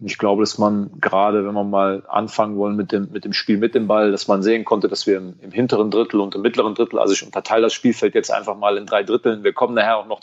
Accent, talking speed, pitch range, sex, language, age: German, 280 wpm, 105-125 Hz, male, German, 30-49